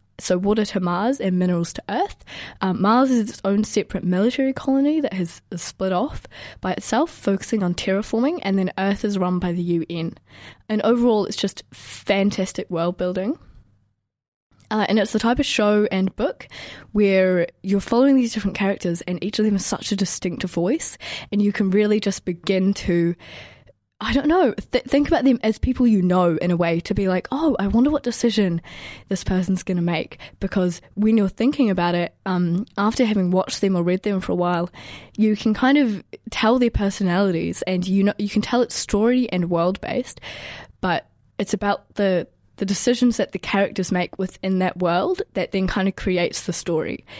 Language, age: English, 10-29